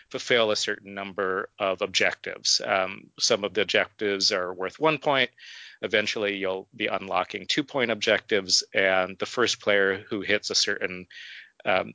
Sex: male